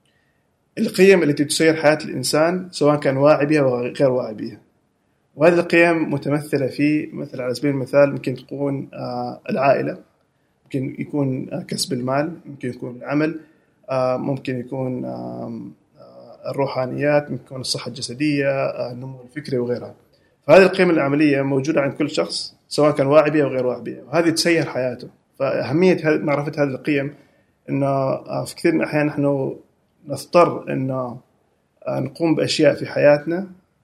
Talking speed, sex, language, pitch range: 135 wpm, male, Arabic, 130-155 Hz